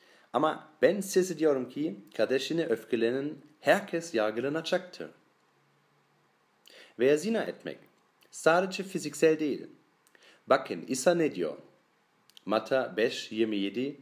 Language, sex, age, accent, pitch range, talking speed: Turkish, male, 40-59, German, 110-170 Hz, 85 wpm